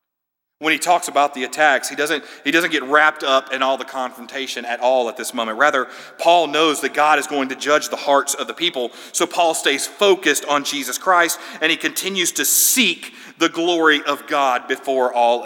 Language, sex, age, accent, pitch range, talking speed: English, male, 40-59, American, 125-160 Hz, 205 wpm